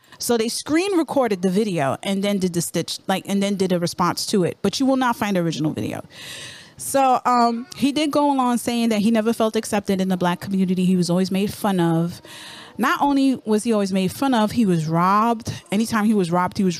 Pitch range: 180-230 Hz